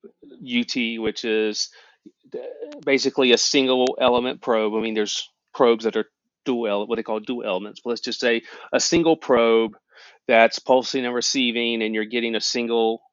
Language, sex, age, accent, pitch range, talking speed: English, male, 40-59, American, 110-135 Hz, 165 wpm